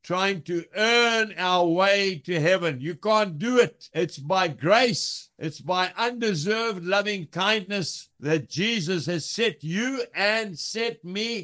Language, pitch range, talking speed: English, 170-235 Hz, 140 wpm